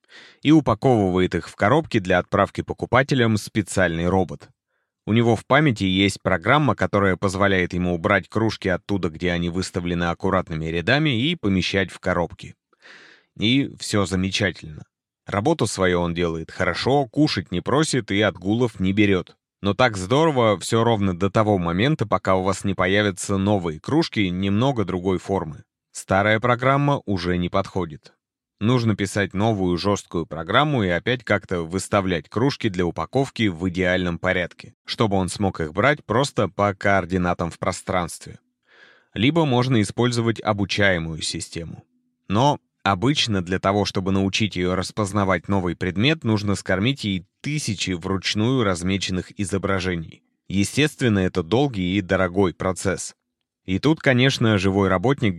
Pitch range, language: 90-115 Hz, Russian